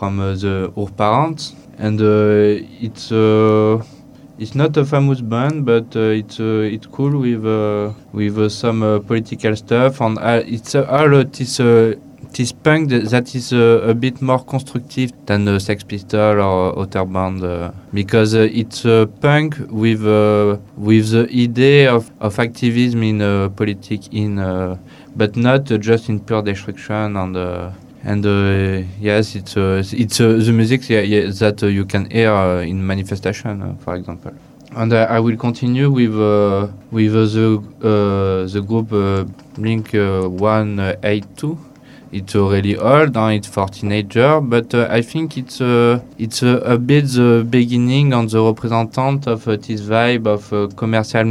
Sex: male